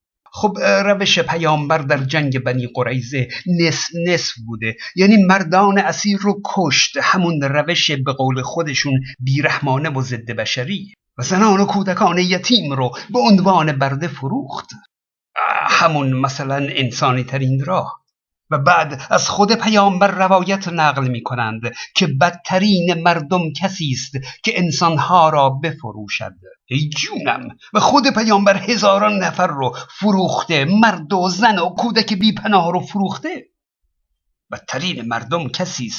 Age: 50-69